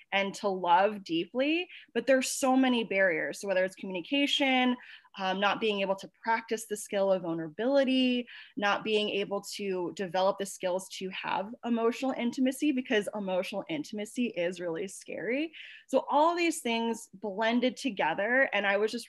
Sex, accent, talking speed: female, American, 160 wpm